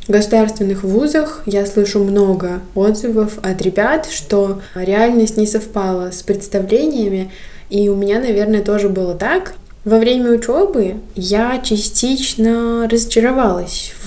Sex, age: female, 20-39